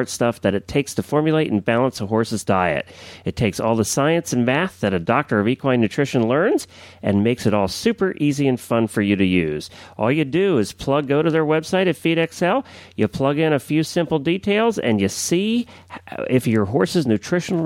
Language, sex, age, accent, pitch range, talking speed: English, male, 40-59, American, 105-150 Hz, 210 wpm